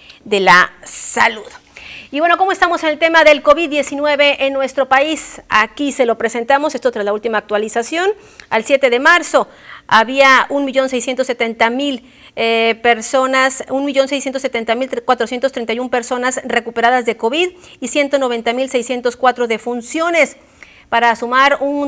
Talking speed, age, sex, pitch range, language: 145 wpm, 40-59, female, 225-275 Hz, Spanish